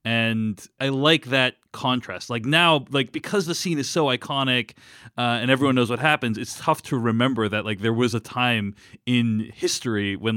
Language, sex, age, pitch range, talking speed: English, male, 30-49, 110-135 Hz, 190 wpm